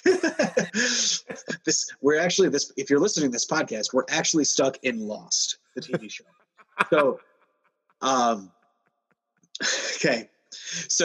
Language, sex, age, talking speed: English, male, 30-49, 120 wpm